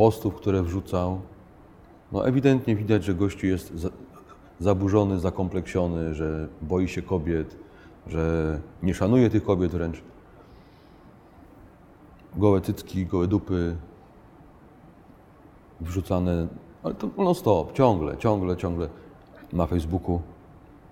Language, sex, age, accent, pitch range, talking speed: Polish, male, 30-49, native, 85-105 Hz, 100 wpm